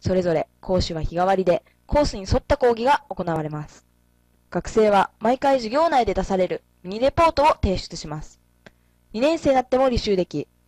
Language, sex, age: Japanese, female, 20-39